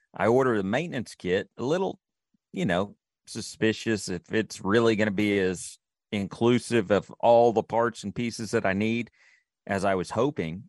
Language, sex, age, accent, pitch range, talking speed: English, male, 40-59, American, 100-115 Hz, 175 wpm